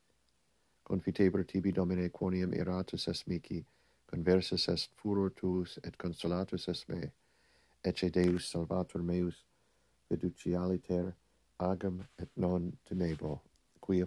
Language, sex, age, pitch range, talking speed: English, male, 50-69, 85-95 Hz, 105 wpm